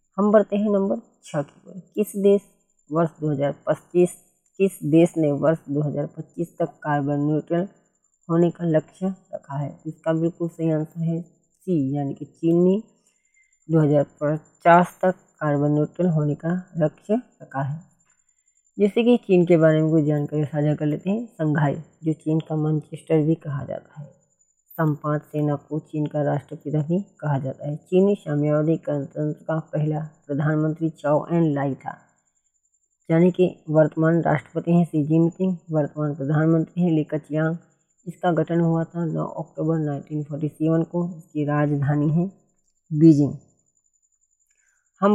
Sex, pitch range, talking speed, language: female, 150-175 Hz, 145 wpm, Hindi